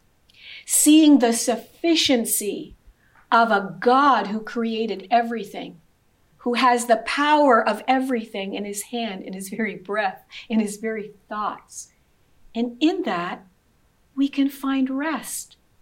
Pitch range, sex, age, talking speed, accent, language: 210-255 Hz, female, 50-69, 125 wpm, American, English